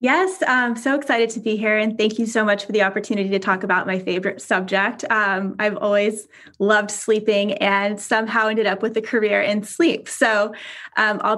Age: 20-39